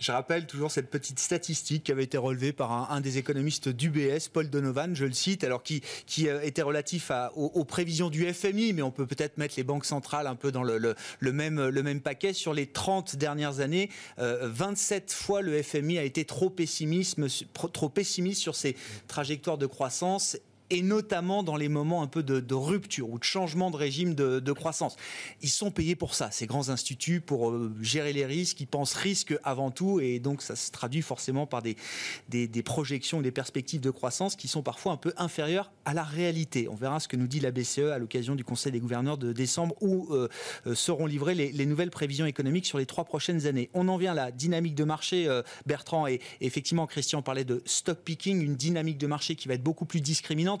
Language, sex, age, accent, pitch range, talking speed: French, male, 30-49, French, 135-170 Hz, 225 wpm